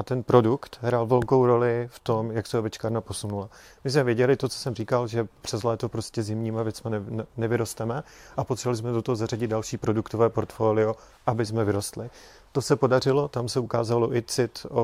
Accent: native